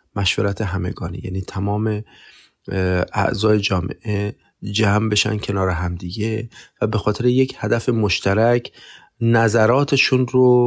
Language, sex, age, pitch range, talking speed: Persian, male, 30-49, 100-120 Hz, 100 wpm